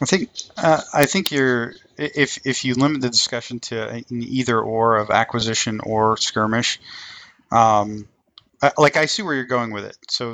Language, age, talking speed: English, 30-49, 180 wpm